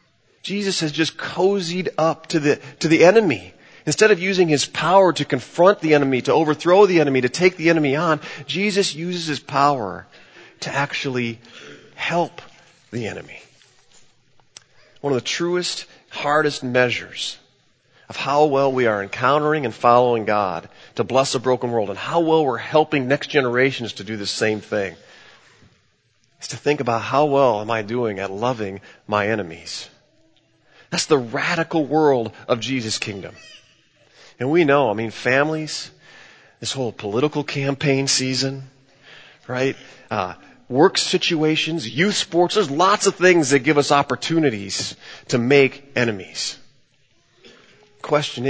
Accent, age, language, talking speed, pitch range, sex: American, 40-59, English, 145 wpm, 120-155 Hz, male